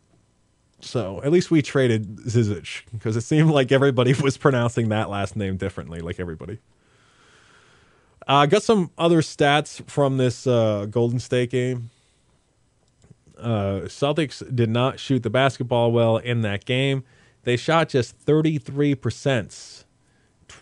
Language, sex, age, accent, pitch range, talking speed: English, male, 20-39, American, 105-135 Hz, 135 wpm